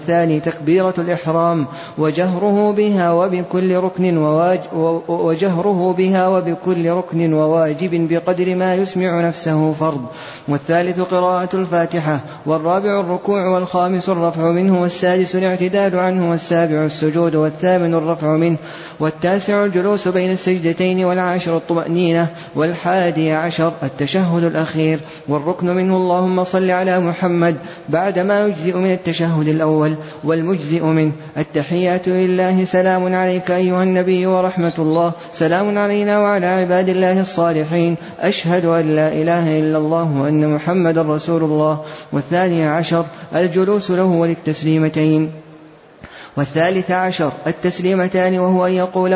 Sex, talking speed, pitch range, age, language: male, 105 wpm, 160-185 Hz, 30-49, Arabic